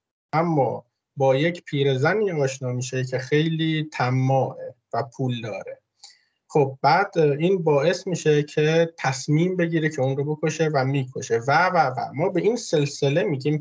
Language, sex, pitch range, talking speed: English, male, 130-170 Hz, 150 wpm